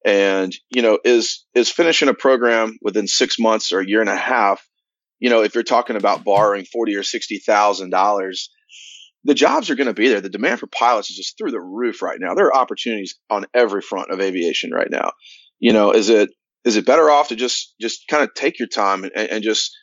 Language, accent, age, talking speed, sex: English, American, 30-49, 225 wpm, male